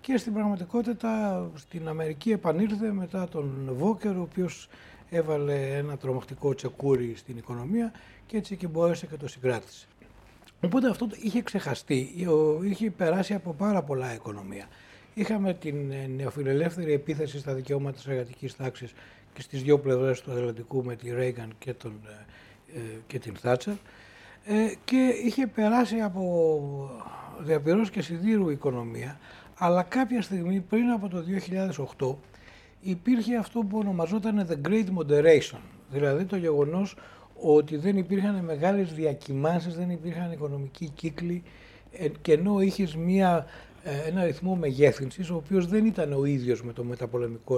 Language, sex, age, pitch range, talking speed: Greek, male, 60-79, 130-185 Hz, 135 wpm